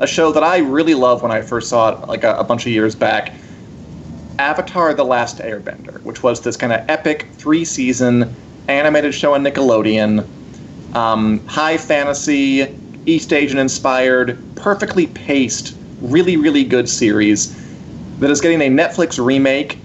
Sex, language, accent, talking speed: male, English, American, 150 wpm